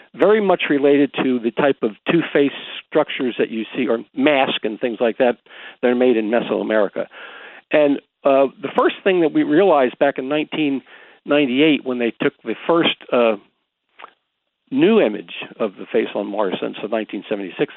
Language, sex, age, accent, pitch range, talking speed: English, male, 50-69, American, 125-175 Hz, 170 wpm